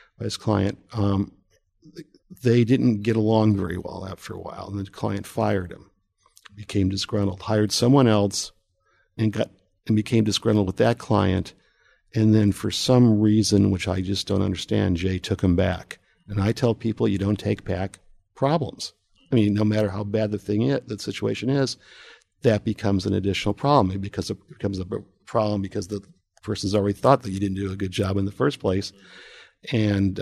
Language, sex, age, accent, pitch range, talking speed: English, male, 50-69, American, 95-110 Hz, 185 wpm